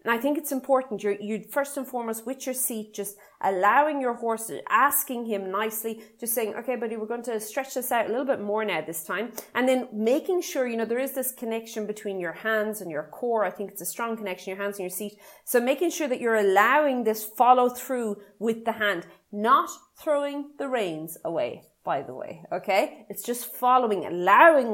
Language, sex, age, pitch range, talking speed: English, female, 30-49, 205-260 Hz, 215 wpm